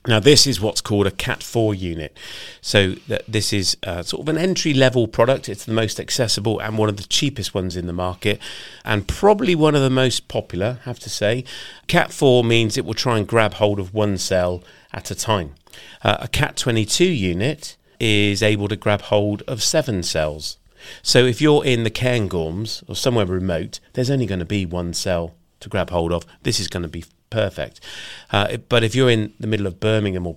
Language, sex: English, male